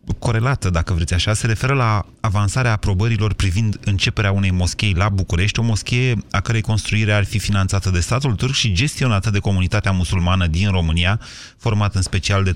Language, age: Romanian, 30-49